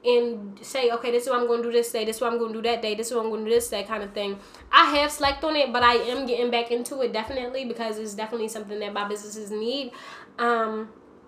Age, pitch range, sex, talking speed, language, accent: 10-29, 225-270 Hz, female, 275 wpm, English, American